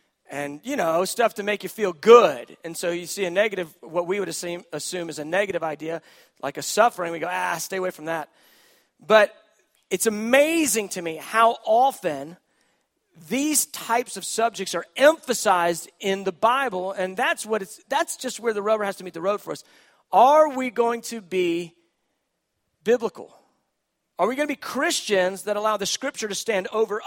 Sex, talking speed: male, 190 wpm